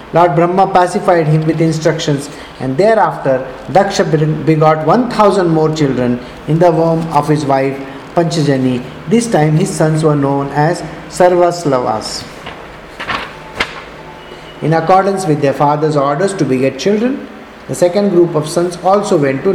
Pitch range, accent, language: 140-185 Hz, Indian, English